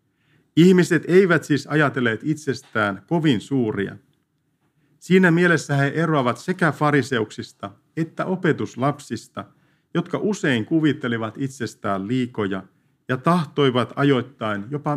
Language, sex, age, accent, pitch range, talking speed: Finnish, male, 50-69, native, 125-165 Hz, 95 wpm